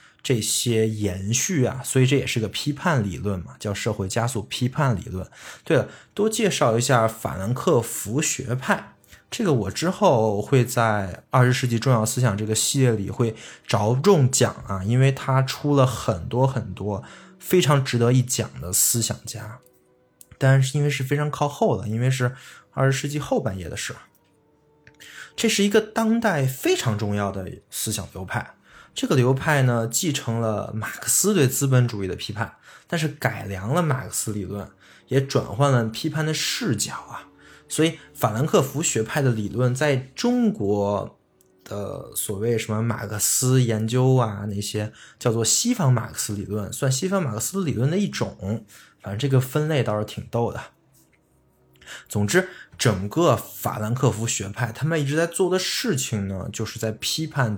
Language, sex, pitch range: Chinese, male, 105-140 Hz